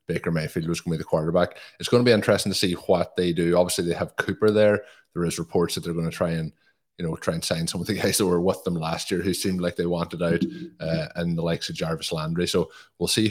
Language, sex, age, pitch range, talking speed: English, male, 20-39, 80-95 Hz, 285 wpm